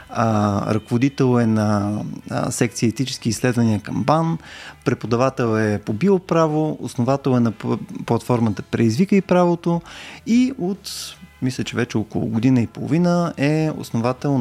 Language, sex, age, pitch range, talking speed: Bulgarian, male, 20-39, 120-155 Hz, 125 wpm